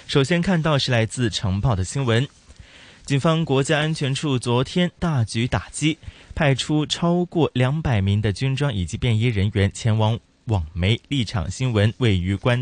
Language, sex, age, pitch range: Chinese, male, 20-39, 110-145 Hz